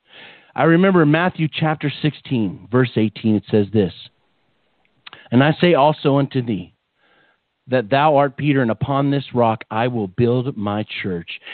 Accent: American